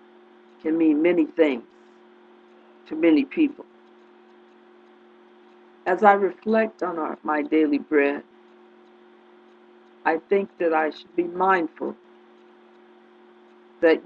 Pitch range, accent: 140-205 Hz, American